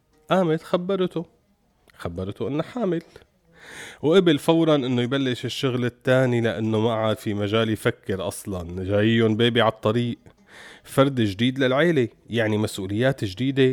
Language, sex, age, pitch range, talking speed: Arabic, male, 30-49, 110-155 Hz, 120 wpm